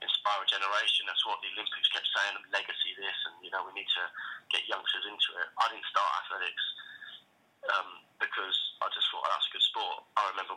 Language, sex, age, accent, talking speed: English, male, 20-39, British, 205 wpm